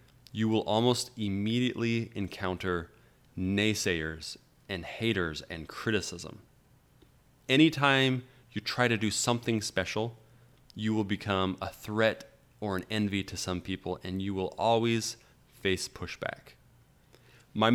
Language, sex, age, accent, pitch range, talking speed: English, male, 30-49, American, 95-125 Hz, 120 wpm